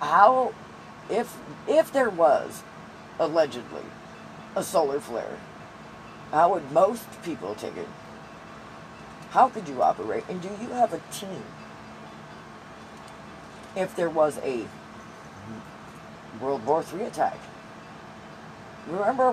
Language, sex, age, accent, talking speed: English, female, 40-59, American, 105 wpm